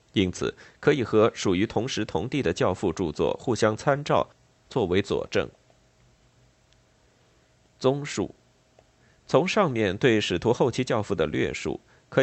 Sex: male